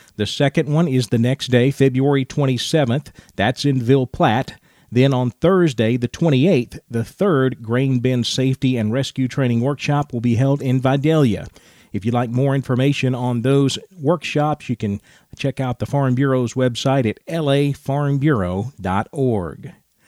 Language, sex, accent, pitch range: English, male, American, 125-160 Hz